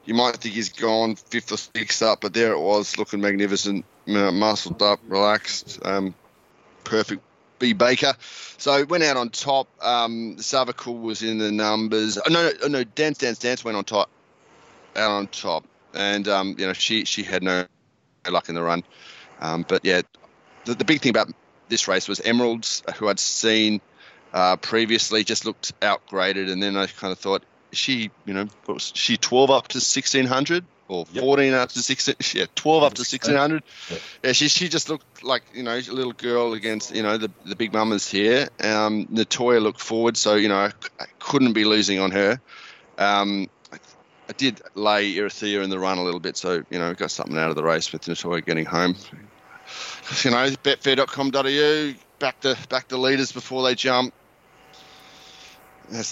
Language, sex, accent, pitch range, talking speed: English, male, Australian, 100-130 Hz, 185 wpm